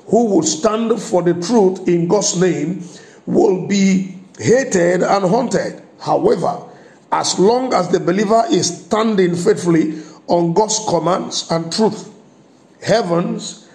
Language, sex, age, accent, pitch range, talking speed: English, male, 50-69, Nigerian, 165-215 Hz, 125 wpm